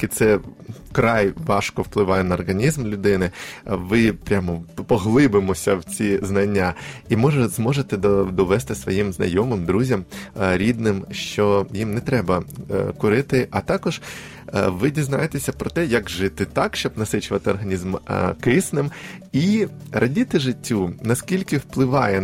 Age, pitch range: 20-39, 95-135 Hz